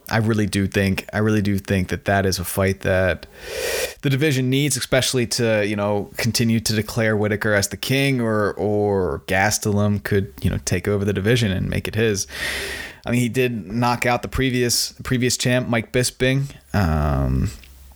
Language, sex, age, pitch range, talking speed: English, male, 20-39, 95-125 Hz, 185 wpm